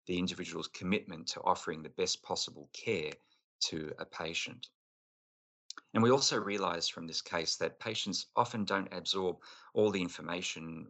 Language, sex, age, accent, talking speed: English, male, 30-49, Australian, 150 wpm